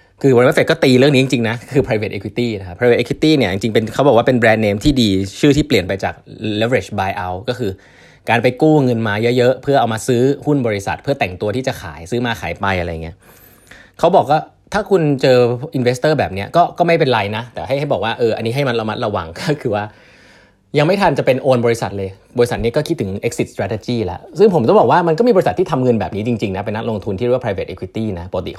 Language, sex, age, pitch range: Thai, male, 20-39, 105-145 Hz